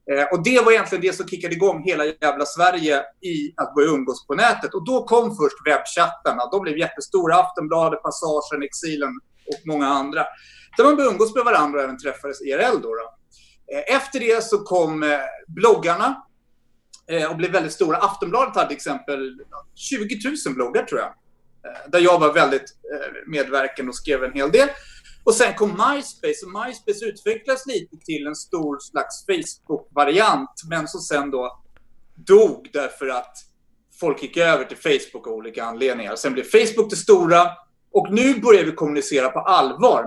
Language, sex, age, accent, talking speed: Swedish, male, 30-49, native, 160 wpm